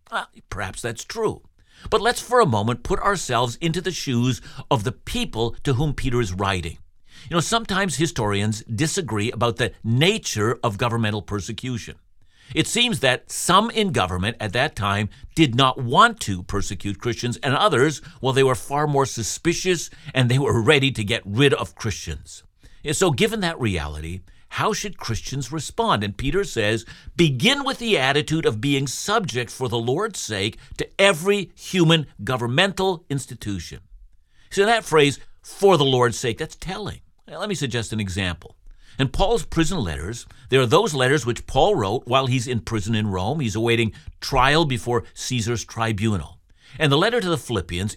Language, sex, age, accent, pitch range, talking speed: English, male, 60-79, American, 110-170 Hz, 170 wpm